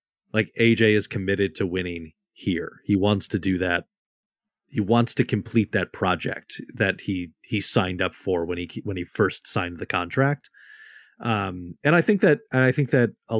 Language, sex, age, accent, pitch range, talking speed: English, male, 30-49, American, 95-115 Hz, 190 wpm